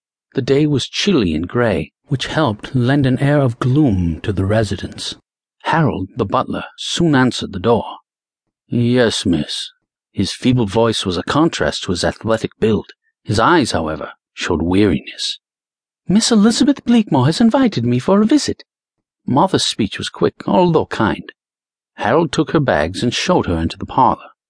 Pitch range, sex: 110-170 Hz, male